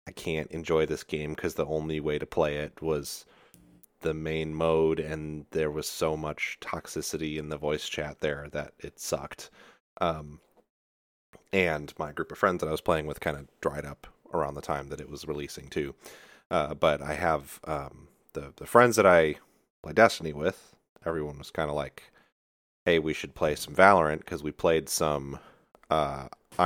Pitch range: 75-85 Hz